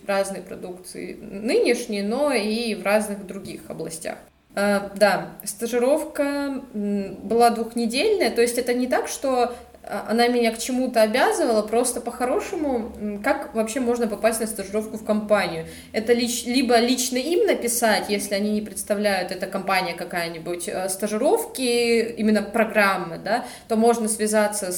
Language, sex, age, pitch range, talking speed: Russian, female, 20-39, 190-235 Hz, 135 wpm